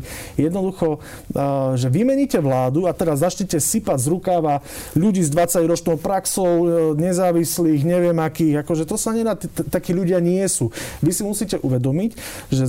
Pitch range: 140-170 Hz